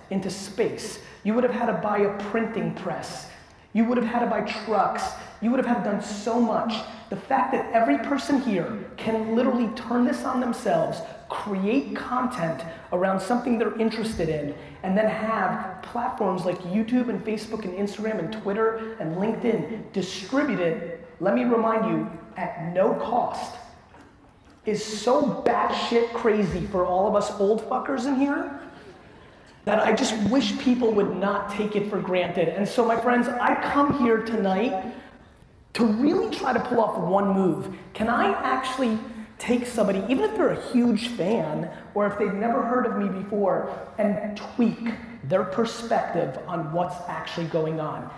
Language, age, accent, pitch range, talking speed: English, 30-49, American, 195-245 Hz, 170 wpm